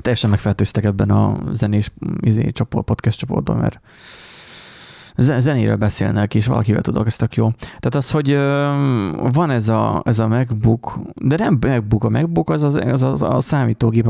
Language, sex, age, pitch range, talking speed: Hungarian, male, 30-49, 110-130 Hz, 160 wpm